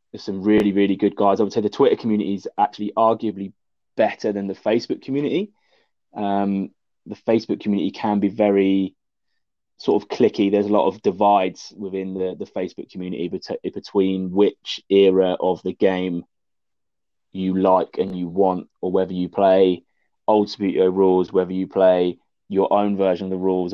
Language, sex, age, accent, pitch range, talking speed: English, male, 20-39, British, 95-110 Hz, 165 wpm